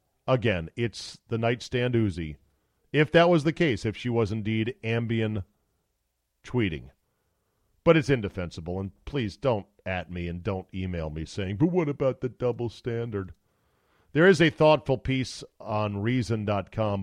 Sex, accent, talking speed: male, American, 150 wpm